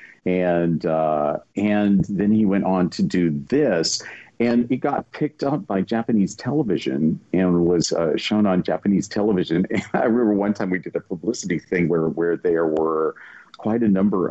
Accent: American